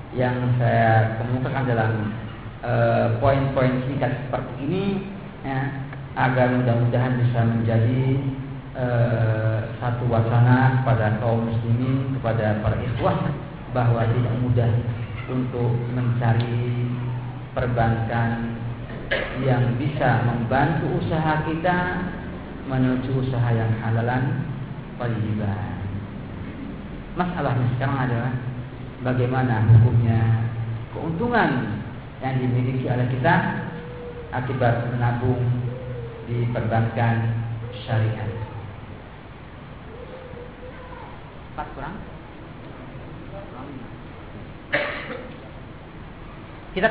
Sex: male